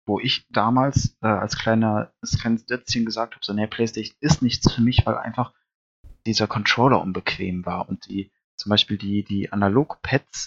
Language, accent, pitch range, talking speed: German, German, 105-130 Hz, 165 wpm